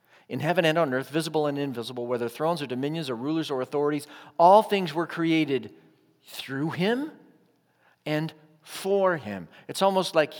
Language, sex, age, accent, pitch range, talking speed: English, male, 50-69, American, 120-170 Hz, 160 wpm